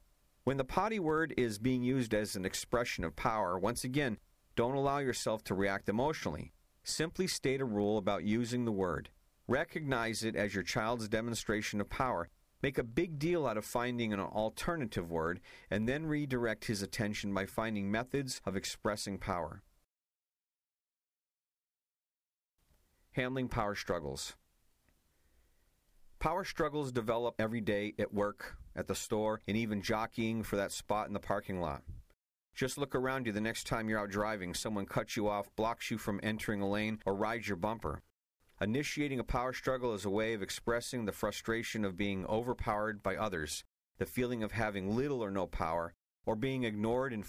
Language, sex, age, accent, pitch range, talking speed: English, male, 50-69, American, 100-120 Hz, 165 wpm